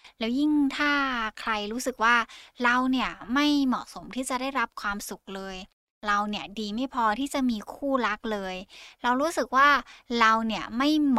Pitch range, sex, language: 200-250 Hz, female, Thai